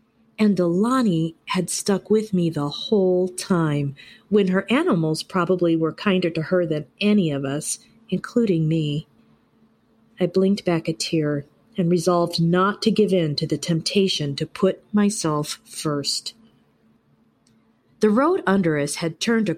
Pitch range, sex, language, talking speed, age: 165-215 Hz, female, English, 145 wpm, 40-59